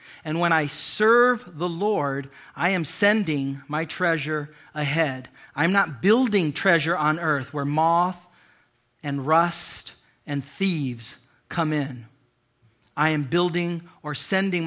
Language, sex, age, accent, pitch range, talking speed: English, male, 40-59, American, 135-165 Hz, 125 wpm